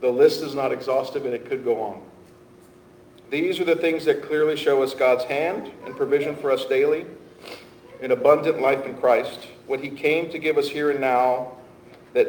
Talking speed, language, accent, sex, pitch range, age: 195 wpm, English, American, male, 120-160 Hz, 50-69